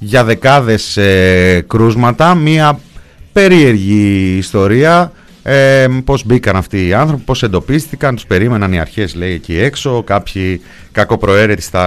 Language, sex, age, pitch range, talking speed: Greek, male, 30-49, 90-115 Hz, 115 wpm